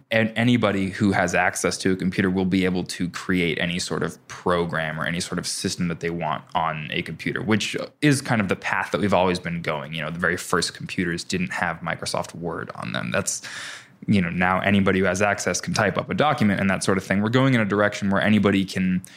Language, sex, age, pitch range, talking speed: English, male, 20-39, 90-105 Hz, 240 wpm